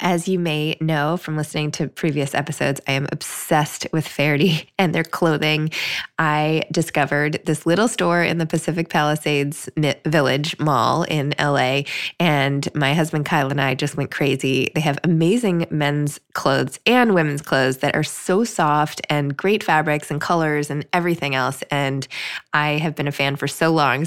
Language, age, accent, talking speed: English, 20-39, American, 170 wpm